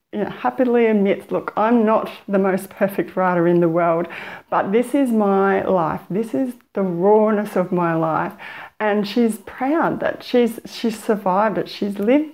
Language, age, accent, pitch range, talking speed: English, 30-49, Australian, 185-230 Hz, 165 wpm